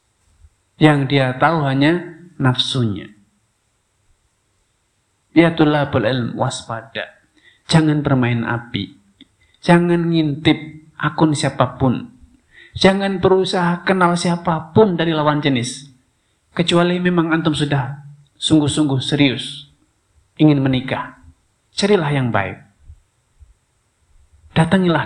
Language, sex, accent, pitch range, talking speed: Indonesian, male, native, 115-180 Hz, 75 wpm